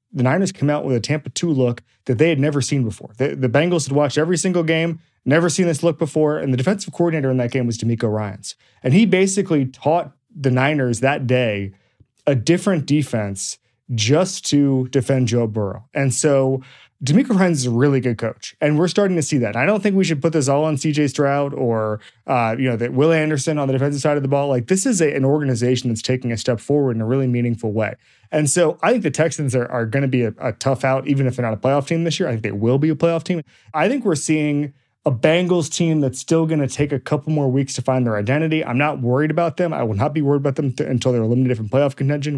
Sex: male